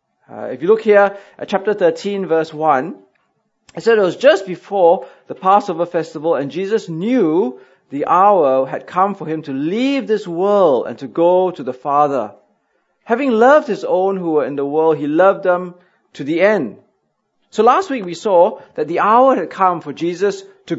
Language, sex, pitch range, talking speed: English, male, 155-225 Hz, 190 wpm